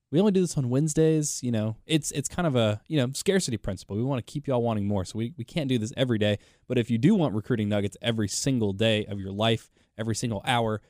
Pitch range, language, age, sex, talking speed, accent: 105-130 Hz, English, 20-39, male, 270 wpm, American